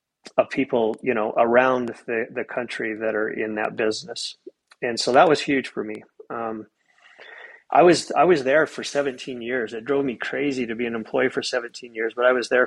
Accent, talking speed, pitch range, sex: American, 210 wpm, 115-130 Hz, male